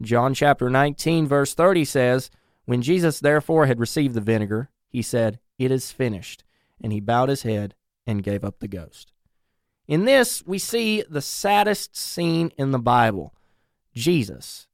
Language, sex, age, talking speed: English, male, 30-49, 160 wpm